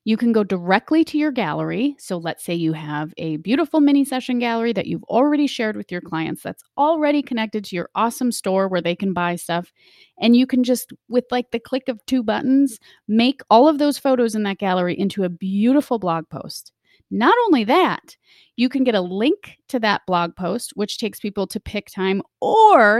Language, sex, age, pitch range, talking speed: English, female, 30-49, 195-250 Hz, 205 wpm